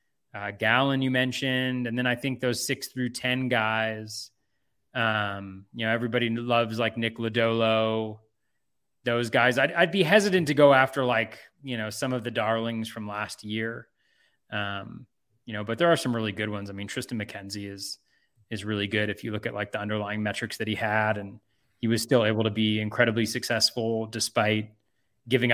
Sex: male